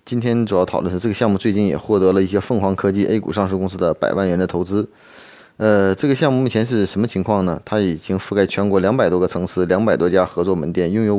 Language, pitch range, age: Chinese, 95-115 Hz, 30-49